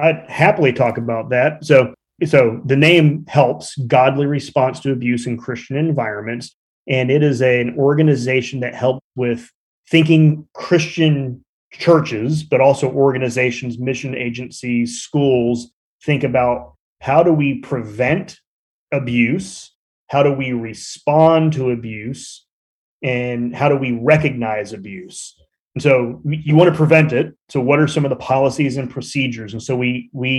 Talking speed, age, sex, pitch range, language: 145 wpm, 30-49, male, 120-145 Hz, English